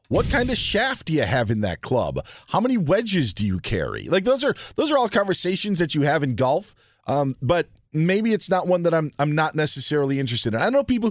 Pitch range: 130-180 Hz